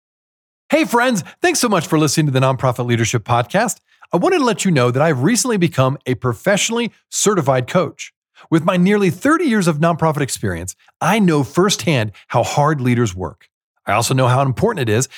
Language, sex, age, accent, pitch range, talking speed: English, male, 40-59, American, 125-200 Hz, 190 wpm